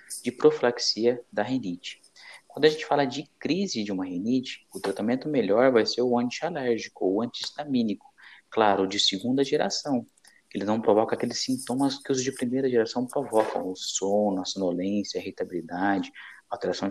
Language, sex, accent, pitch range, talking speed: Portuguese, male, Brazilian, 120-170 Hz, 165 wpm